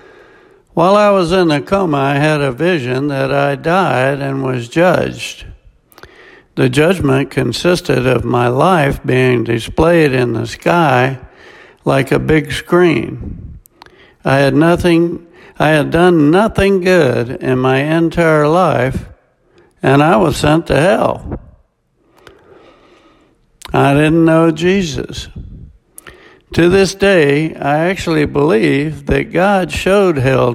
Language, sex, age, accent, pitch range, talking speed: English, male, 60-79, American, 135-170 Hz, 125 wpm